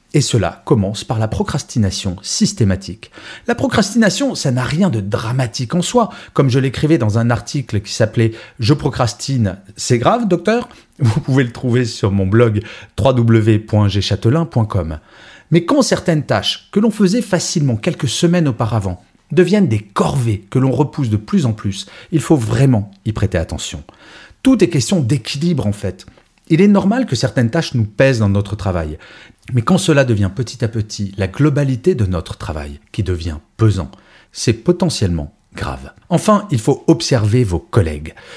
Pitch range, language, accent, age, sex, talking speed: 105-160 Hz, French, French, 40-59, male, 165 wpm